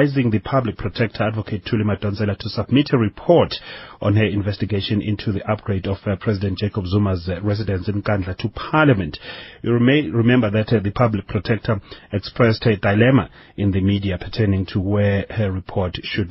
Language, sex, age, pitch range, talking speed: English, male, 30-49, 100-125 Hz, 175 wpm